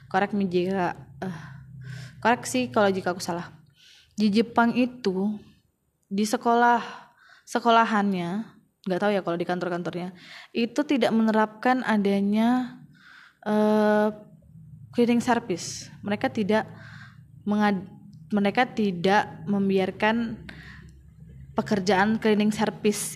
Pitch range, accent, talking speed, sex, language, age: 185-230 Hz, native, 90 wpm, female, Indonesian, 20-39